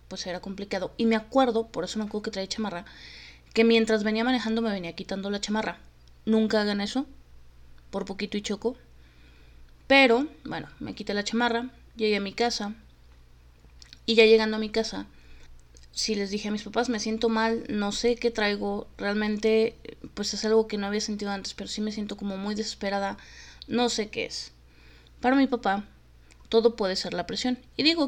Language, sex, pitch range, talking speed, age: Spanish, female, 180-225 Hz, 190 wpm, 20-39